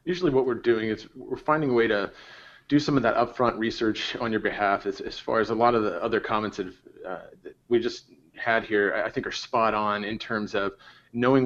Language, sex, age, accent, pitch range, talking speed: English, male, 30-49, American, 110-130 Hz, 235 wpm